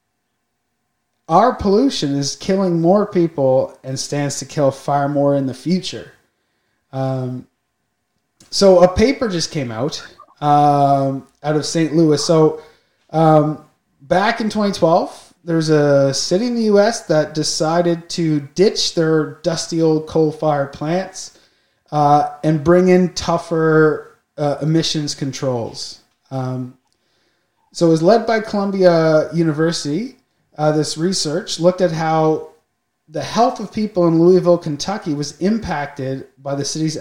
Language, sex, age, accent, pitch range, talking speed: English, male, 20-39, American, 140-175 Hz, 130 wpm